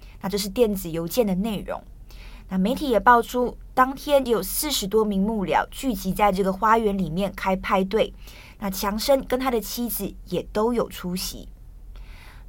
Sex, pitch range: female, 190-235 Hz